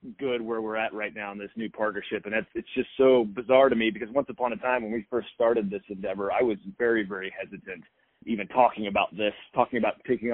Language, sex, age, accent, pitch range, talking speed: English, male, 30-49, American, 105-125 Hz, 240 wpm